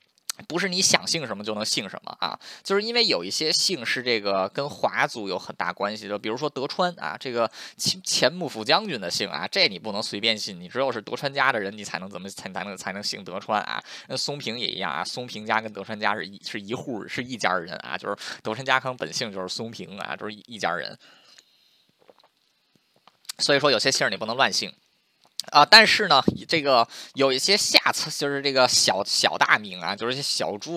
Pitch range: 105-160 Hz